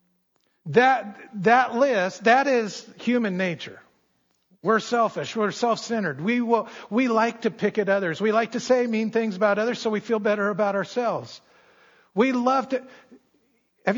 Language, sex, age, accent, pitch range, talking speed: English, male, 50-69, American, 160-220 Hz, 160 wpm